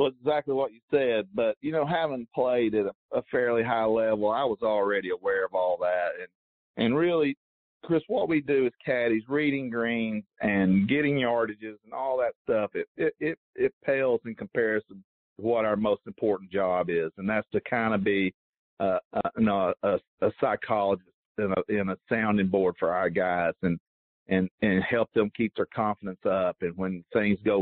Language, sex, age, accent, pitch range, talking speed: English, male, 50-69, American, 95-135 Hz, 195 wpm